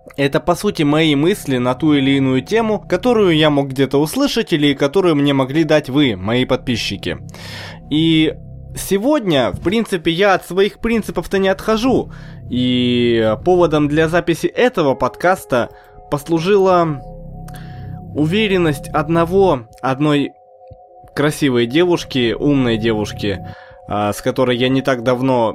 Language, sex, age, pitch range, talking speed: Russian, male, 20-39, 130-175 Hz, 125 wpm